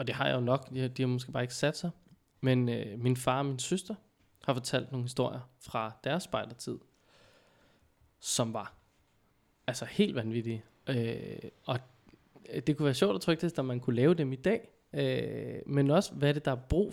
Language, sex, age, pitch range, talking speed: Danish, male, 20-39, 125-170 Hz, 210 wpm